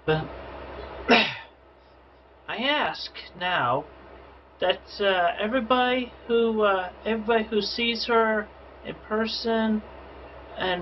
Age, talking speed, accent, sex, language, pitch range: 40-59, 90 wpm, American, male, English, 125-195 Hz